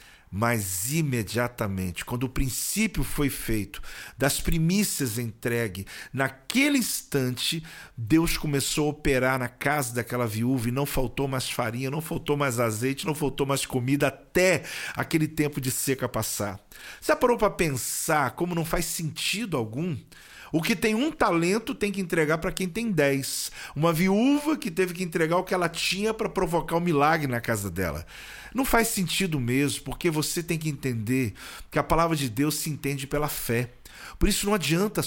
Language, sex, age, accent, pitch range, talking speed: Portuguese, male, 50-69, Brazilian, 130-175 Hz, 170 wpm